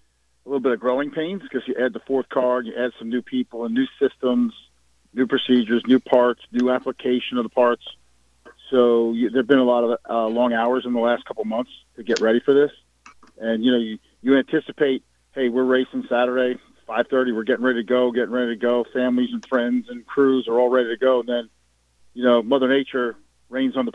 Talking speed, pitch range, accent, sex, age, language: 225 wpm, 110-130 Hz, American, male, 40-59, English